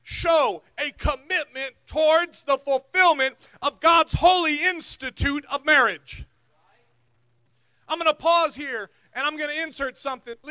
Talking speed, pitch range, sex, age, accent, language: 130 wpm, 280-355 Hz, male, 40-59, American, English